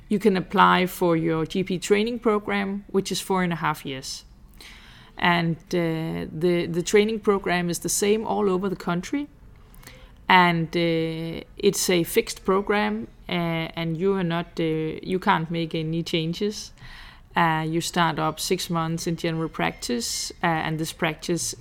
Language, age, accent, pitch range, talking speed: Finnish, 20-39, Danish, 160-185 Hz, 160 wpm